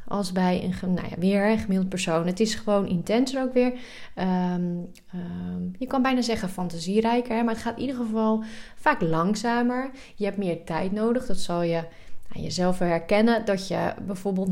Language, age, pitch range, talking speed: Dutch, 20-39, 185-230 Hz, 175 wpm